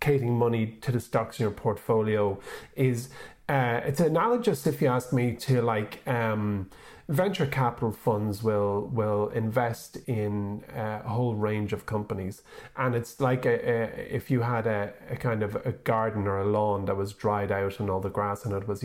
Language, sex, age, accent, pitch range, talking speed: English, male, 30-49, Irish, 105-135 Hz, 180 wpm